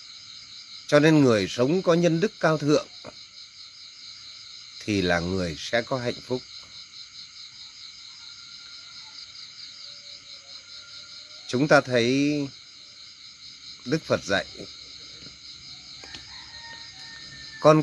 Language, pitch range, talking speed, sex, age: Vietnamese, 100-150 Hz, 75 wpm, male, 30-49